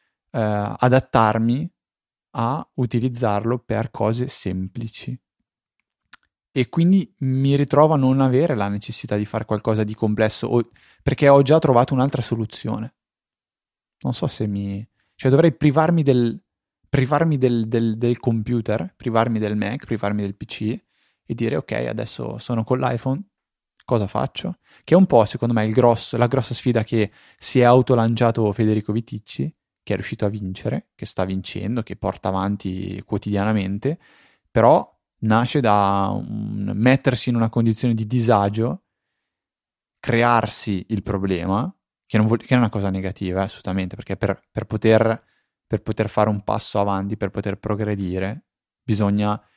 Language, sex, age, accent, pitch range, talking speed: Italian, male, 20-39, native, 105-120 Hz, 140 wpm